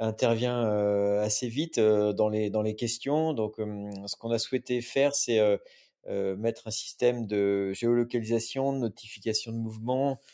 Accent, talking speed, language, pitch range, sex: French, 140 wpm, French, 105-125 Hz, male